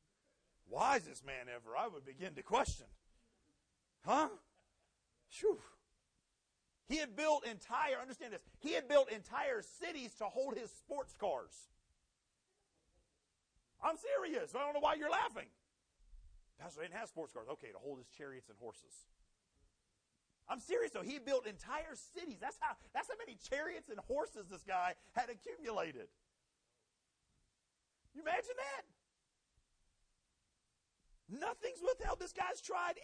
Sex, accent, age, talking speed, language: male, American, 40-59, 135 wpm, English